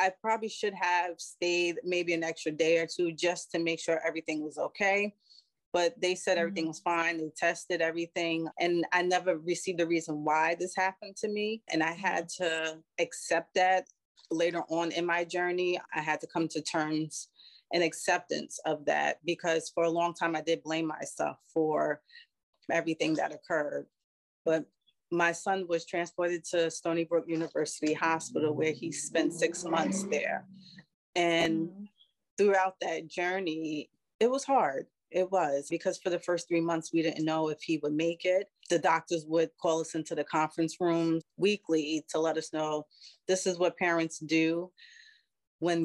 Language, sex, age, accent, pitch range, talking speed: English, female, 30-49, American, 160-180 Hz, 170 wpm